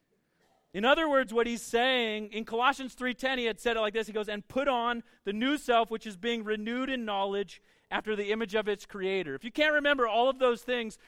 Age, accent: 40-59, American